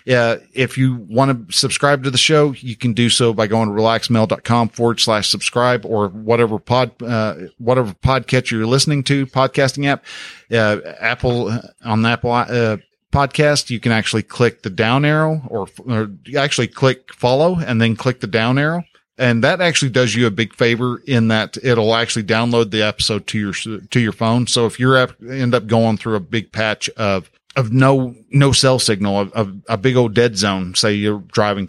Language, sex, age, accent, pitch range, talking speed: English, male, 50-69, American, 110-130 Hz, 195 wpm